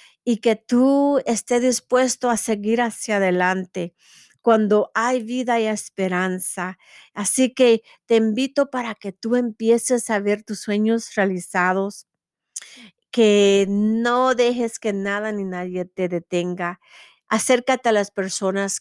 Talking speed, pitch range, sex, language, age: 130 wpm, 190-230 Hz, female, English, 50-69